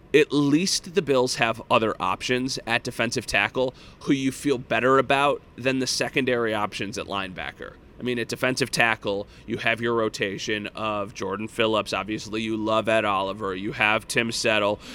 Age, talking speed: 30-49, 170 wpm